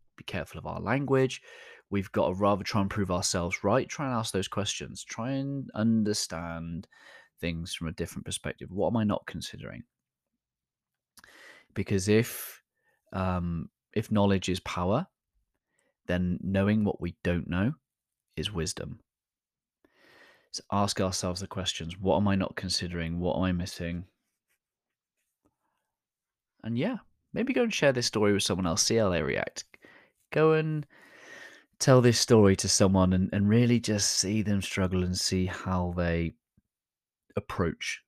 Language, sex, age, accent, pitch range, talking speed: English, male, 20-39, British, 90-110 Hz, 150 wpm